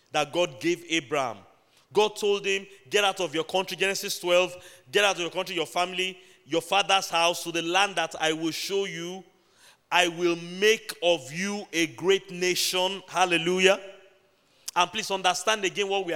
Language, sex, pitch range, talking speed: English, male, 175-205 Hz, 180 wpm